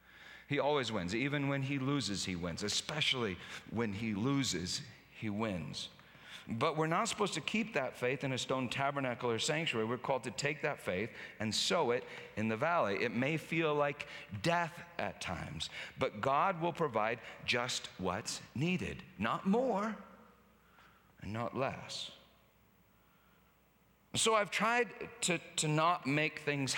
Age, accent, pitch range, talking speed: 50-69, American, 120-170 Hz, 150 wpm